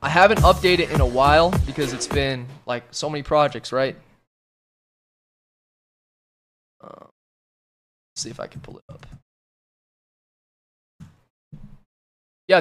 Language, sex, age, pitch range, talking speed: English, male, 20-39, 110-155 Hz, 115 wpm